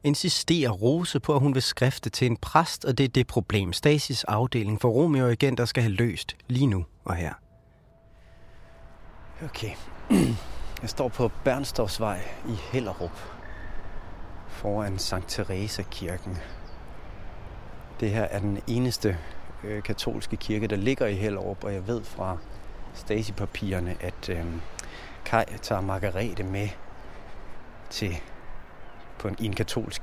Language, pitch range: Danish, 95-115 Hz